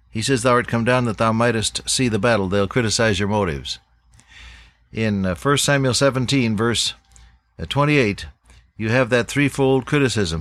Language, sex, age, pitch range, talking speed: English, male, 60-79, 95-130 Hz, 155 wpm